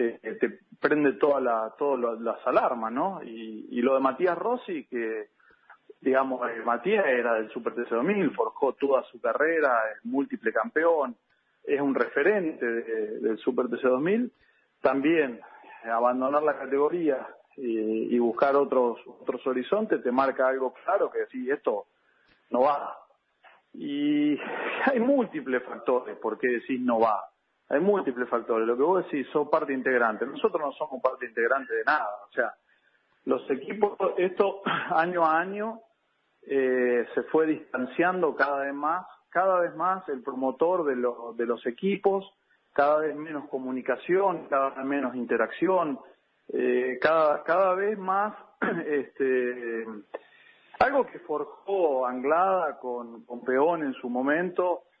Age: 40-59